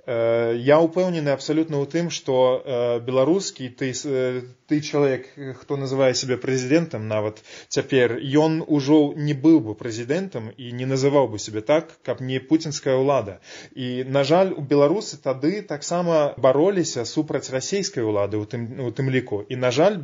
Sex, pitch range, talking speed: male, 125-150 Hz, 140 wpm